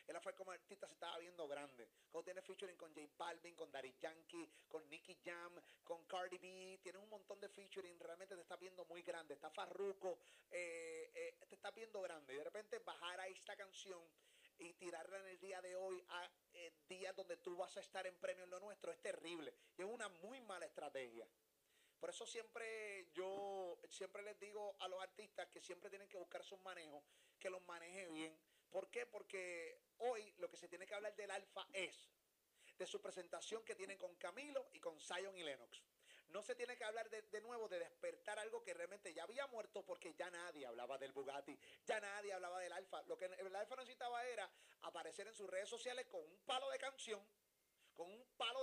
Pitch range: 180-230 Hz